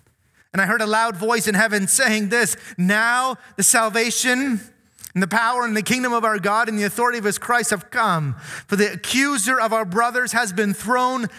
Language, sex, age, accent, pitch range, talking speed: English, male, 30-49, American, 130-205 Hz, 205 wpm